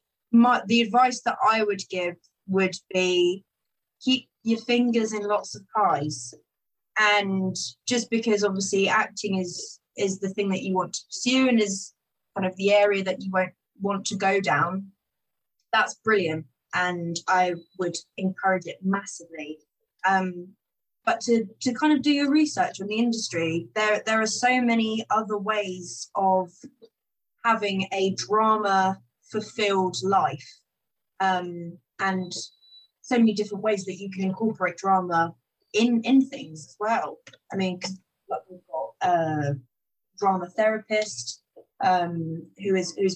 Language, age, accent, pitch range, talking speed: English, 20-39, British, 180-220 Hz, 145 wpm